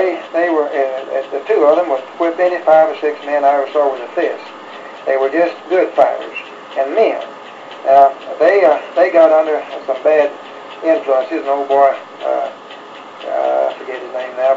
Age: 60-79